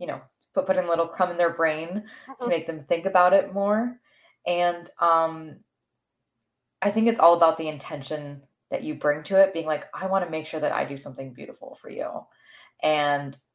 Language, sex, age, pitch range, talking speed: English, female, 20-39, 150-200 Hz, 210 wpm